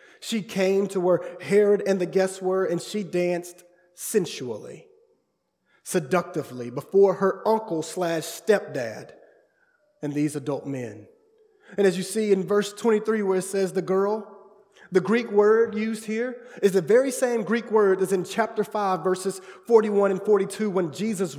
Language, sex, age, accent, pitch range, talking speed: English, male, 30-49, American, 175-225 Hz, 155 wpm